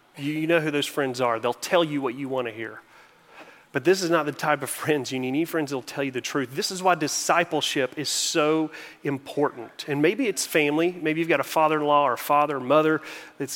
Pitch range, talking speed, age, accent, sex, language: 130-160 Hz, 245 wpm, 30-49, American, male, English